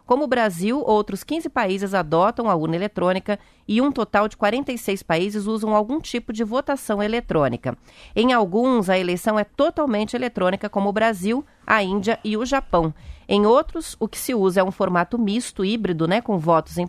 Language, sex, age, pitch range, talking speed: Portuguese, female, 30-49, 175-225 Hz, 185 wpm